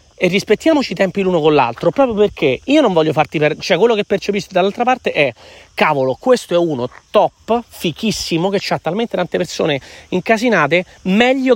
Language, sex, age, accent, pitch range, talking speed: Italian, male, 30-49, native, 155-235 Hz, 175 wpm